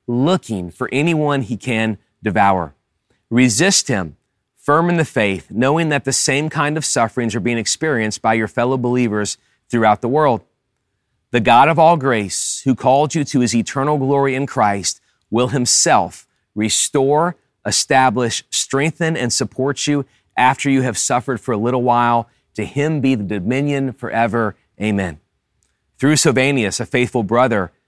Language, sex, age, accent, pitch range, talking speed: English, male, 30-49, American, 105-140 Hz, 155 wpm